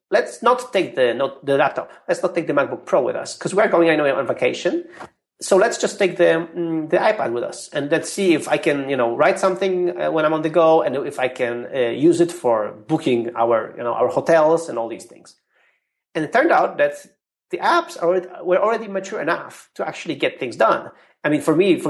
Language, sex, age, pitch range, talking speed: English, male, 30-49, 150-190 Hz, 235 wpm